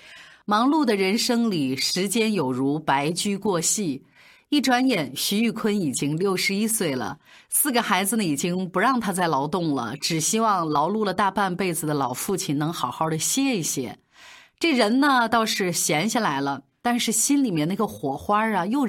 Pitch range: 160-245 Hz